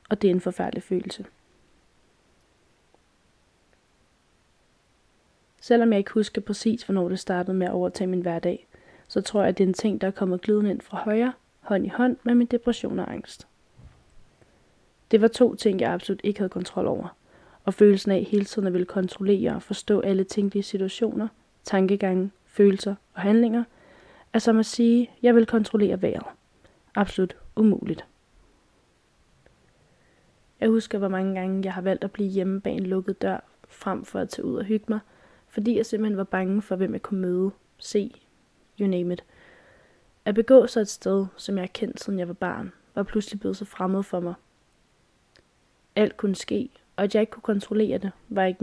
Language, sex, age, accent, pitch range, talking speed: Danish, female, 20-39, native, 190-220 Hz, 185 wpm